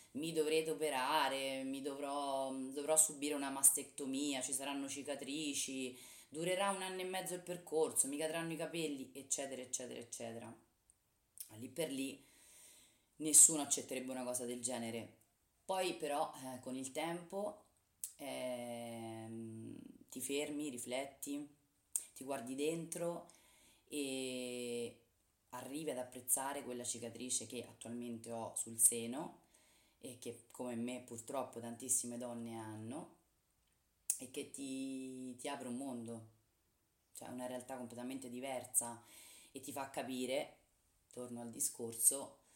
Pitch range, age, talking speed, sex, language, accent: 115-140 Hz, 20-39, 120 wpm, female, Italian, native